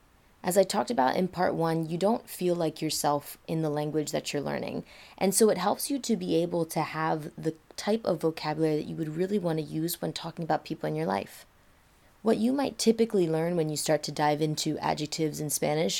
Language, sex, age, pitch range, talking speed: English, female, 20-39, 155-190 Hz, 225 wpm